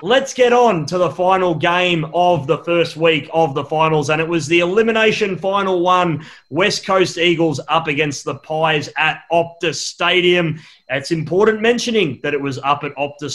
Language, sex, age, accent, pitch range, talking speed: English, male, 30-49, Australian, 150-185 Hz, 180 wpm